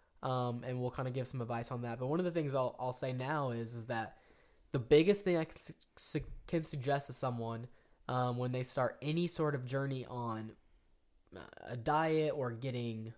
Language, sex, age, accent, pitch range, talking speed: English, male, 10-29, American, 125-175 Hz, 210 wpm